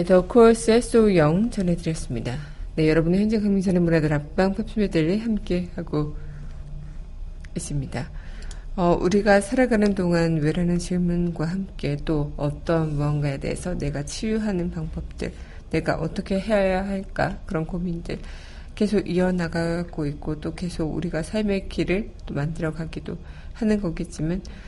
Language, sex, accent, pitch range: Korean, female, native, 160-200 Hz